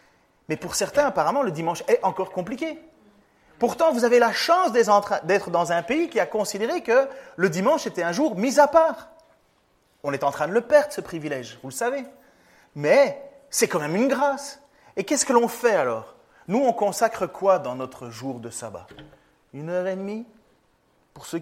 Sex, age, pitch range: male, 30-49, 160-235 Hz